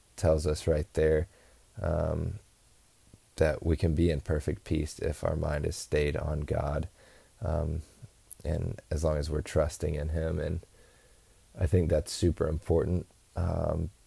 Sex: male